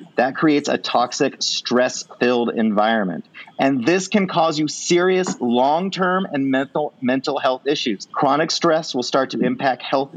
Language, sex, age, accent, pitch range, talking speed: English, male, 40-59, American, 135-185 Hz, 150 wpm